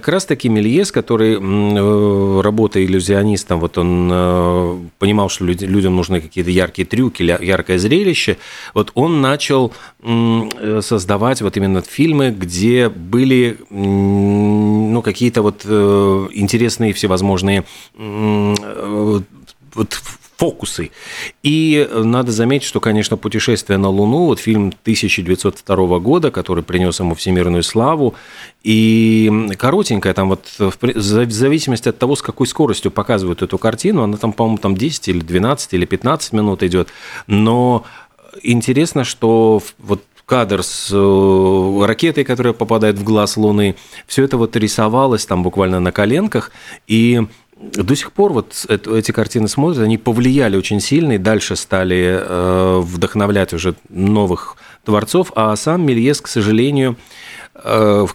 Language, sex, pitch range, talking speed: Russian, male, 95-120 Hz, 125 wpm